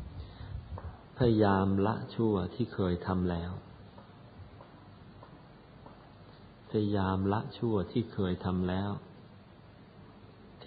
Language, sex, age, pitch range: Thai, male, 50-69, 95-120 Hz